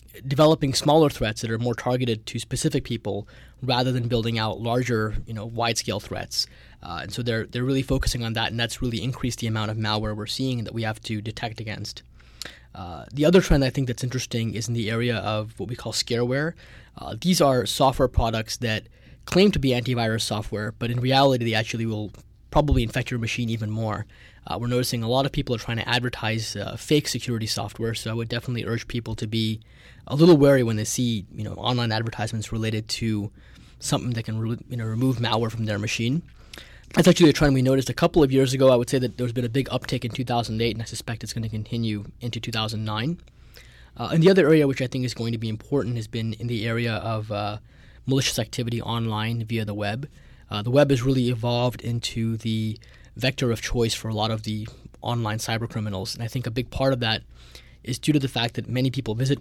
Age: 20-39